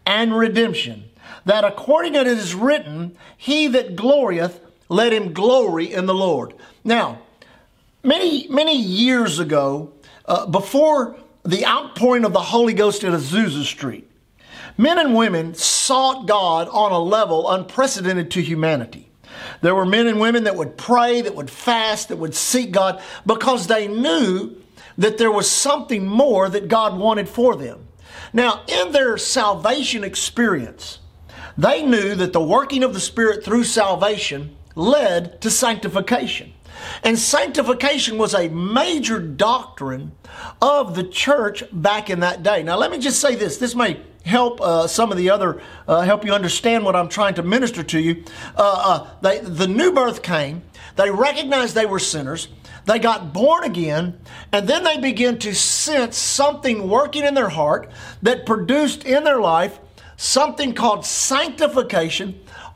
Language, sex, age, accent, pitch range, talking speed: English, male, 50-69, American, 185-250 Hz, 155 wpm